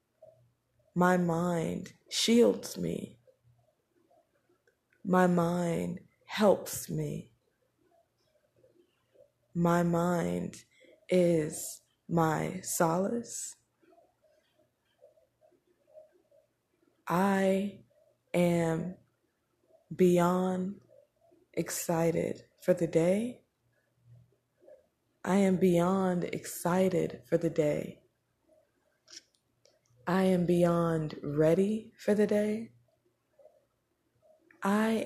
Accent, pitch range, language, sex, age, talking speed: American, 160-215 Hz, English, female, 20-39, 60 wpm